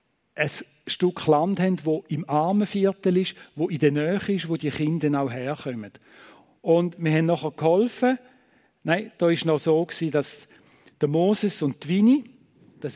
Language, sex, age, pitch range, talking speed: German, male, 50-69, 145-190 Hz, 160 wpm